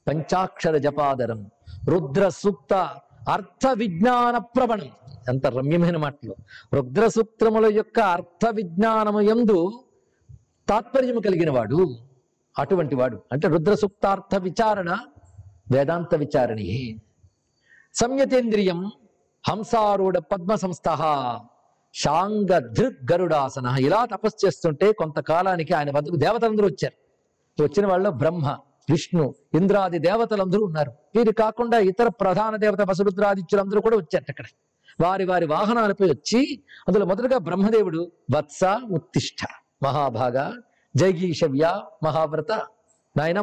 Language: Telugu